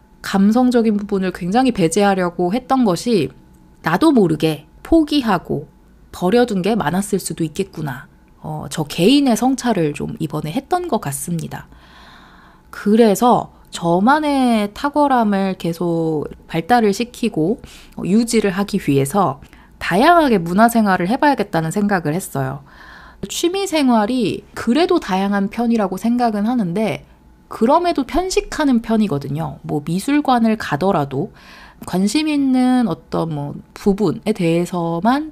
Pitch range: 165-240 Hz